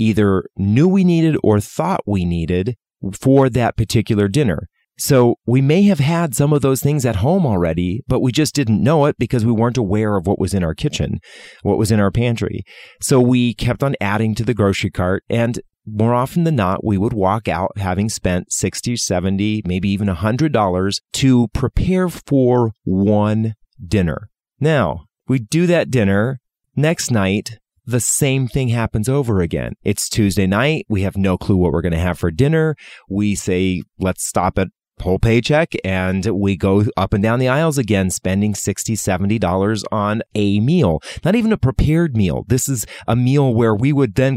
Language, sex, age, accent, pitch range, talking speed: English, male, 30-49, American, 95-125 Hz, 190 wpm